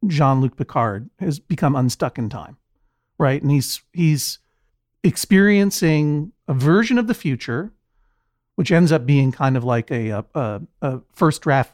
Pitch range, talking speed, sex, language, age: 125-165 Hz, 150 wpm, male, English, 50-69